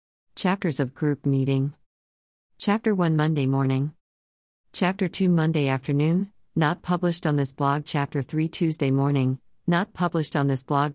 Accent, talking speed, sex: American, 140 wpm, female